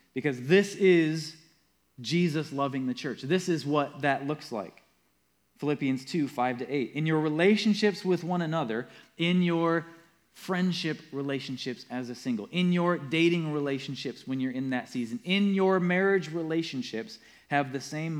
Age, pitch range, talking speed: 20-39, 120-165 Hz, 150 wpm